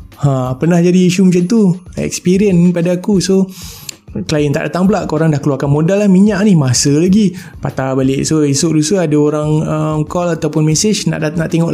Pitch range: 140-175 Hz